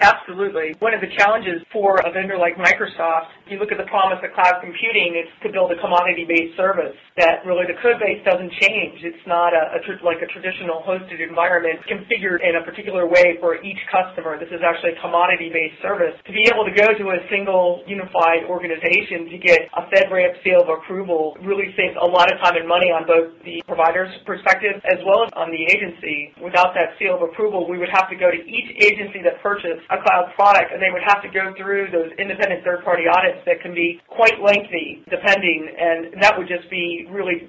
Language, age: English, 40-59